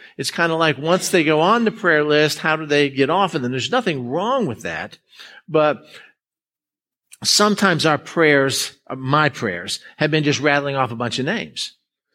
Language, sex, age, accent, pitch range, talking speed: English, male, 50-69, American, 125-170 Hz, 190 wpm